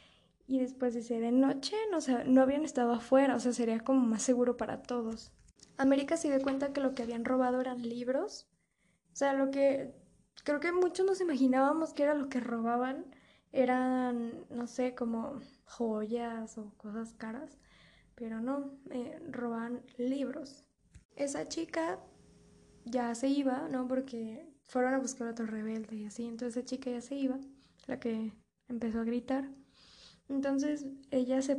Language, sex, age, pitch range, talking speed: Spanish, female, 10-29, 240-275 Hz, 160 wpm